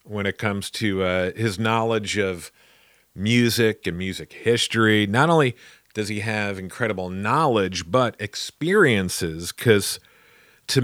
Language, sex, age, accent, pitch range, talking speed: English, male, 40-59, American, 95-115 Hz, 125 wpm